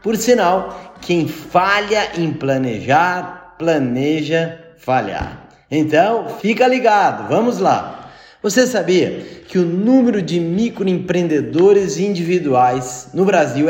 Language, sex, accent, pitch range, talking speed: Portuguese, male, Brazilian, 165-210 Hz, 100 wpm